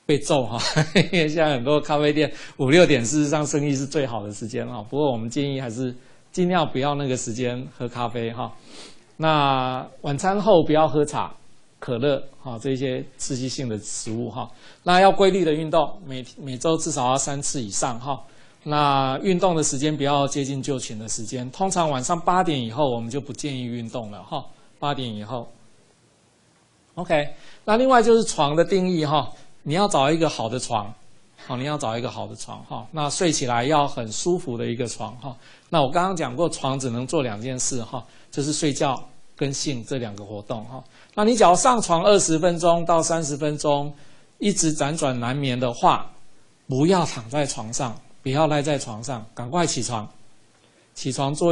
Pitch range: 125-155 Hz